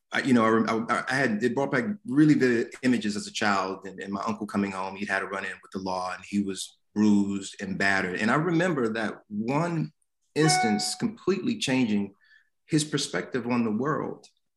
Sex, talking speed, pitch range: male, 200 wpm, 100-140 Hz